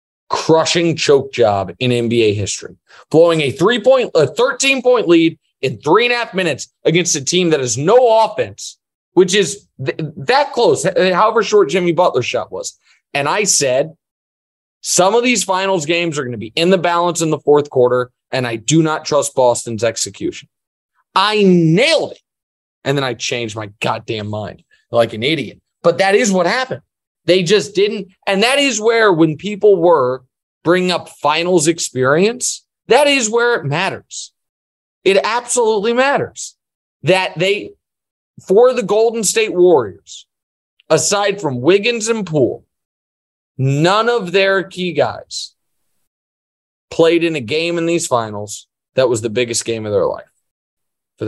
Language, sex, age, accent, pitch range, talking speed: English, male, 20-39, American, 130-200 Hz, 160 wpm